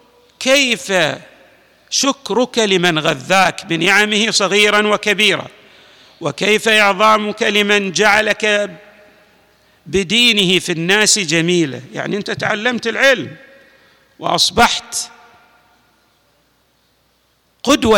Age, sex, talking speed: 50-69, male, 70 wpm